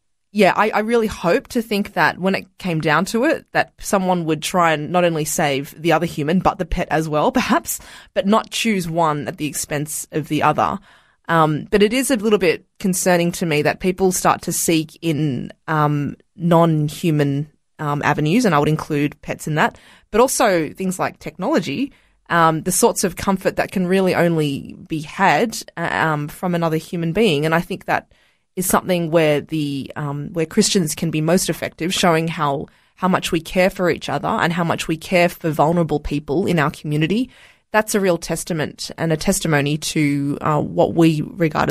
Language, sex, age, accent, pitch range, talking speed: English, female, 20-39, Australian, 150-190 Hz, 195 wpm